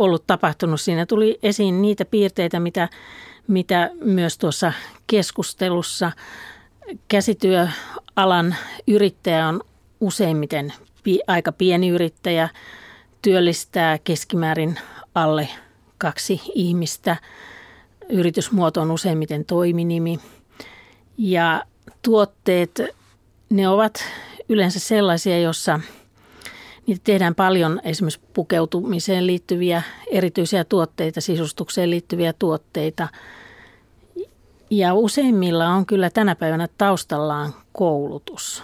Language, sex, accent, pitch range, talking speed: Finnish, female, native, 160-200 Hz, 85 wpm